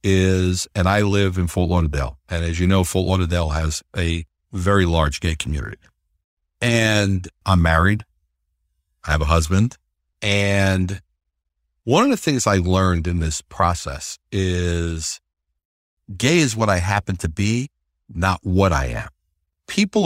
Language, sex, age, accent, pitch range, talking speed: English, male, 60-79, American, 75-100 Hz, 145 wpm